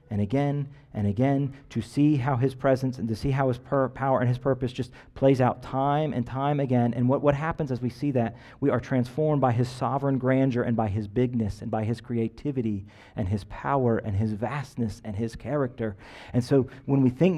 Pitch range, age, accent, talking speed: 115-145 Hz, 40-59, American, 215 wpm